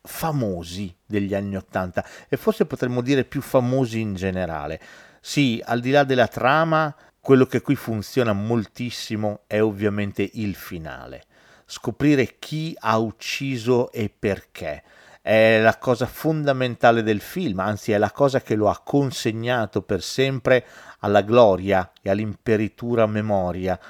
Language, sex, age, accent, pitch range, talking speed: Italian, male, 40-59, native, 100-135 Hz, 135 wpm